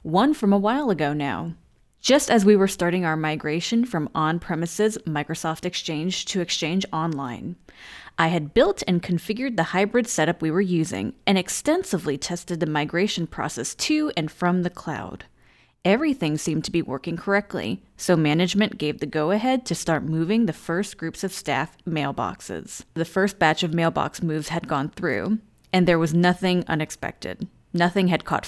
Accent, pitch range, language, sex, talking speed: American, 160-200 Hz, English, female, 165 wpm